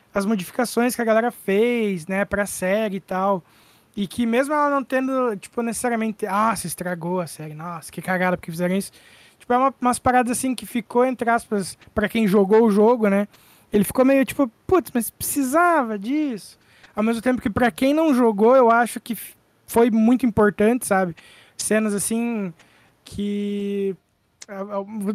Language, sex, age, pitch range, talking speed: Portuguese, male, 20-39, 200-250 Hz, 170 wpm